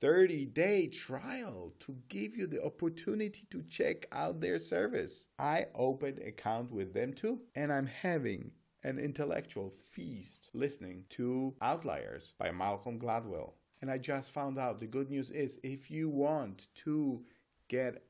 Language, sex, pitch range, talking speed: English, male, 120-150 Hz, 150 wpm